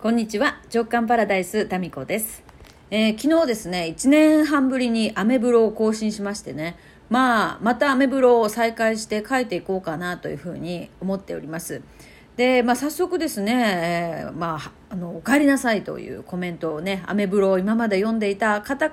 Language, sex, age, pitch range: Japanese, female, 40-59, 190-270 Hz